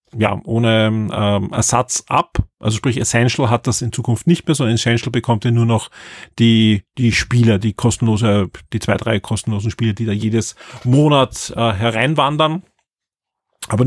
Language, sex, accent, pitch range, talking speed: German, male, German, 115-140 Hz, 160 wpm